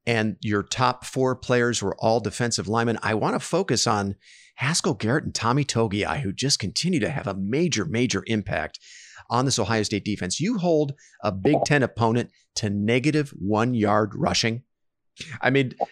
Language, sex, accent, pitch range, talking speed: English, male, American, 105-145 Hz, 170 wpm